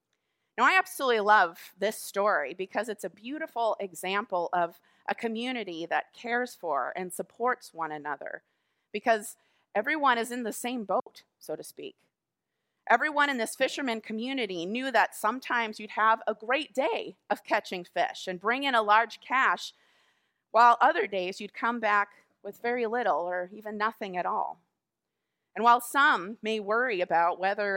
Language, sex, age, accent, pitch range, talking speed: English, female, 30-49, American, 190-245 Hz, 160 wpm